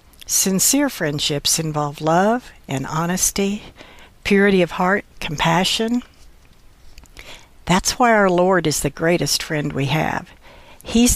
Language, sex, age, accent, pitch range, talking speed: English, female, 60-79, American, 160-220 Hz, 115 wpm